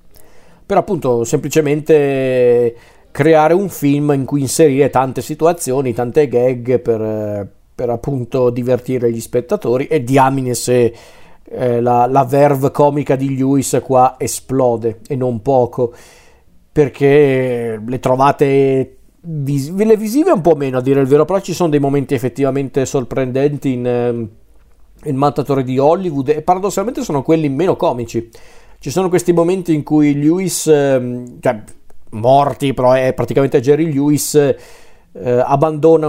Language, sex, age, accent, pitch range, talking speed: Italian, male, 40-59, native, 125-150 Hz, 135 wpm